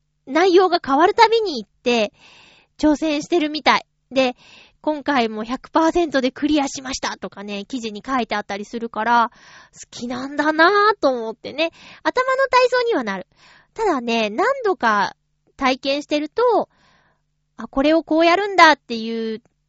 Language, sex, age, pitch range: Japanese, female, 20-39, 230-375 Hz